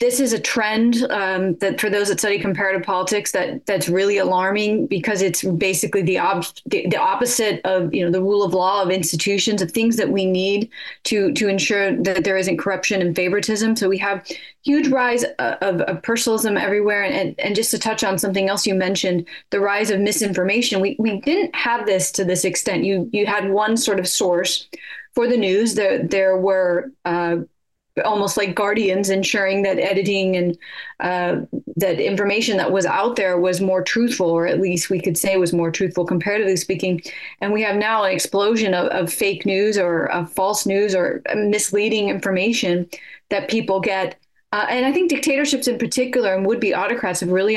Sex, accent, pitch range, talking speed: female, American, 185-220 Hz, 195 wpm